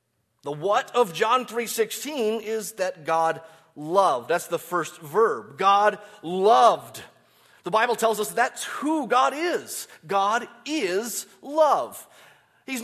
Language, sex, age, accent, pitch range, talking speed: English, male, 30-49, American, 180-255 Hz, 125 wpm